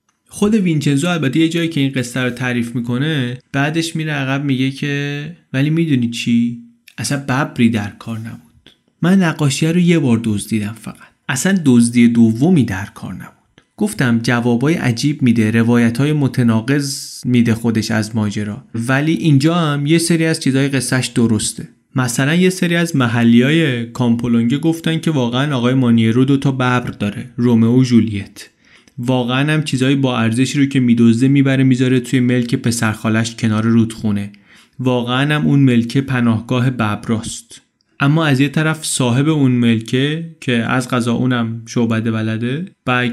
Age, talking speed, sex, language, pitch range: 30-49, 155 wpm, male, Persian, 115-140 Hz